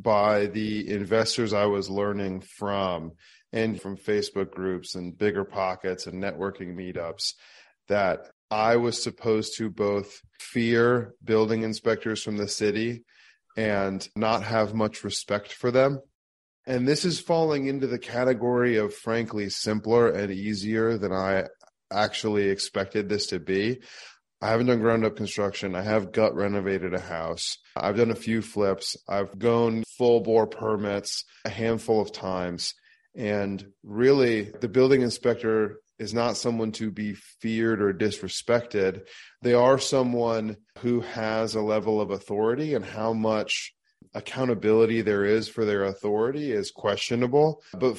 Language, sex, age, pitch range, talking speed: English, male, 30-49, 100-120 Hz, 140 wpm